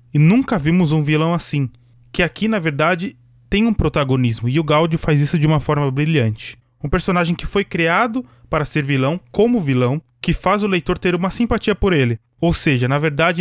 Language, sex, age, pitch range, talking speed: Portuguese, male, 20-39, 125-185 Hz, 200 wpm